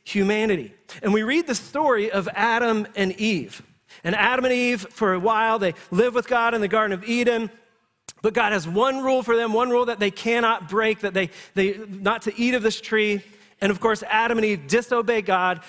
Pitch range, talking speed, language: 180-225 Hz, 215 wpm, English